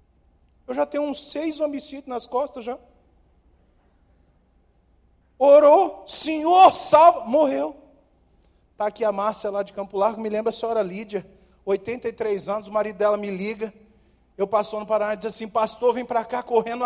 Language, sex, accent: Portuguese, male, Brazilian